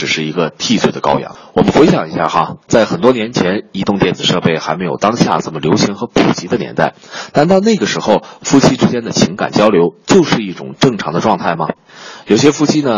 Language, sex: Chinese, male